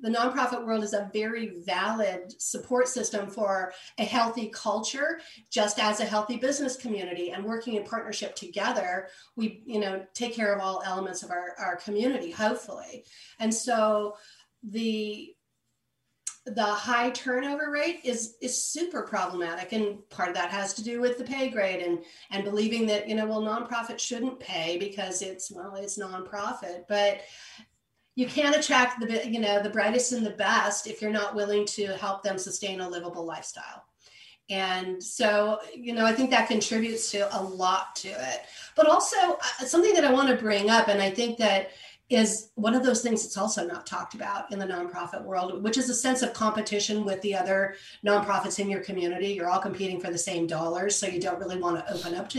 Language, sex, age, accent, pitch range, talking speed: English, female, 40-59, American, 195-235 Hz, 190 wpm